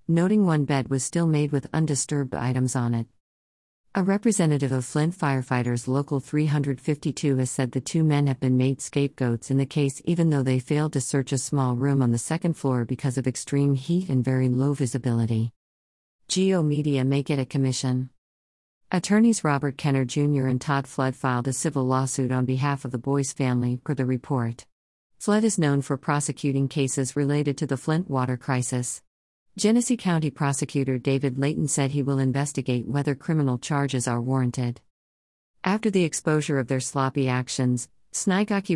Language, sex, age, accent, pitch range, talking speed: English, female, 50-69, American, 130-150 Hz, 170 wpm